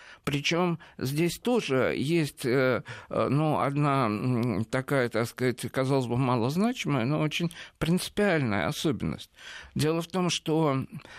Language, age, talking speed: Russian, 50-69, 105 wpm